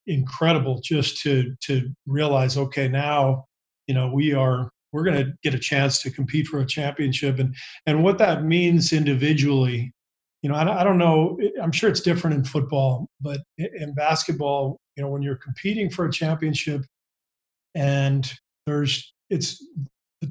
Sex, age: male, 40-59